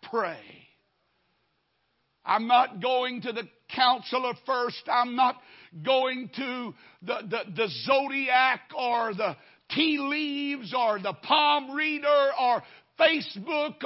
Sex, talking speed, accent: male, 115 wpm, American